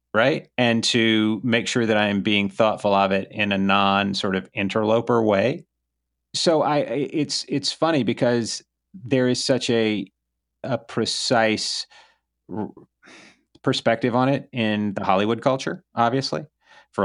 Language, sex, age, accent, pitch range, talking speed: English, male, 30-49, American, 90-115 Hz, 140 wpm